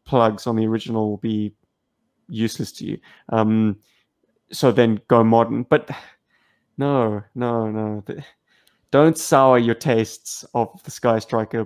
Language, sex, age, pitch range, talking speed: English, male, 20-39, 110-140 Hz, 140 wpm